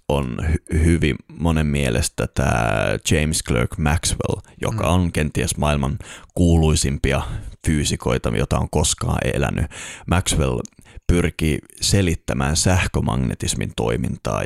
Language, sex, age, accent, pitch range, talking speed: Finnish, male, 30-49, native, 75-100 Hz, 95 wpm